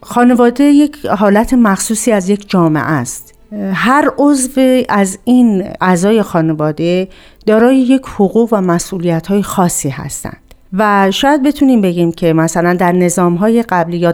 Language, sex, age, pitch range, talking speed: Persian, female, 50-69, 175-220 Hz, 140 wpm